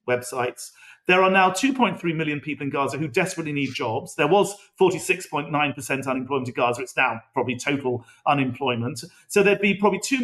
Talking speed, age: 170 wpm, 40-59